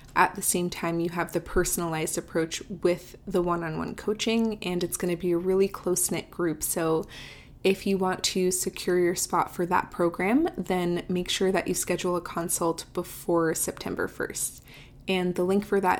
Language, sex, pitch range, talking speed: English, female, 170-195 Hz, 185 wpm